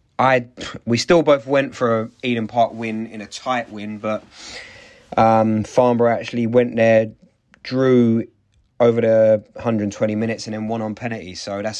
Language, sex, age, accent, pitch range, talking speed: English, male, 20-39, British, 100-115 Hz, 165 wpm